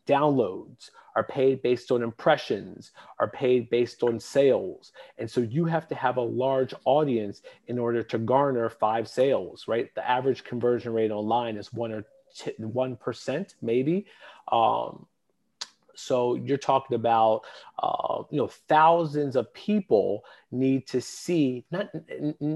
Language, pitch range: English, 120-150 Hz